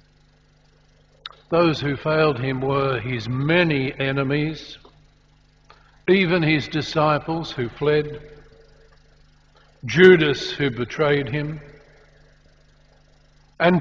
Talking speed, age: 80 wpm, 60-79